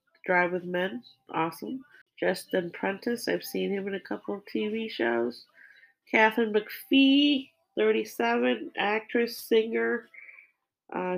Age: 40-59